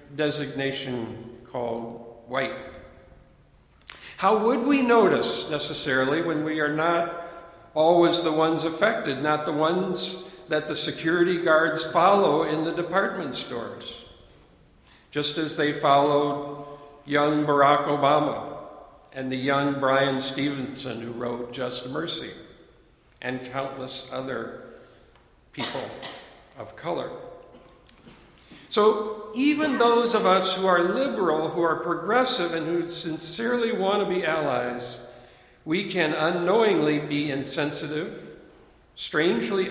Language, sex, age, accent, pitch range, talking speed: English, male, 60-79, American, 145-190 Hz, 110 wpm